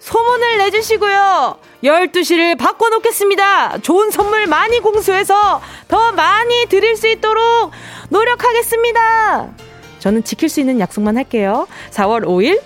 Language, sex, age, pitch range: Korean, female, 20-39, 230-370 Hz